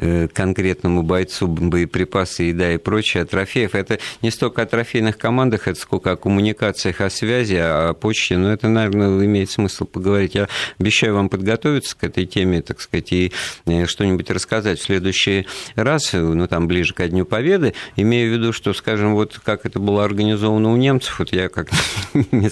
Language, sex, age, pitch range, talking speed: Russian, male, 50-69, 90-110 Hz, 175 wpm